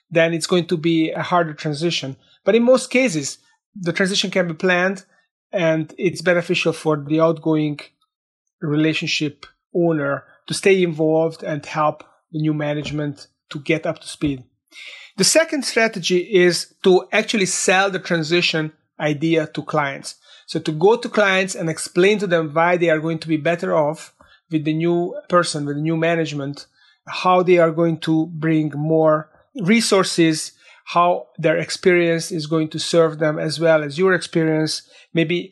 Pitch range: 155-180 Hz